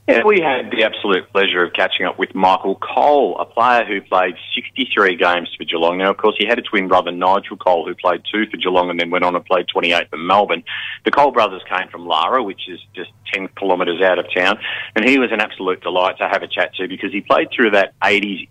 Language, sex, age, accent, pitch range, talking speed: English, male, 30-49, Australian, 90-100 Hz, 240 wpm